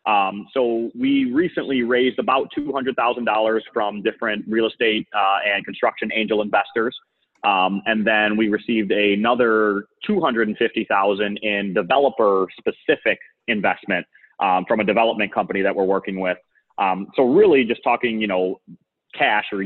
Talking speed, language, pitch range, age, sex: 135 wpm, English, 90-110 Hz, 30-49, male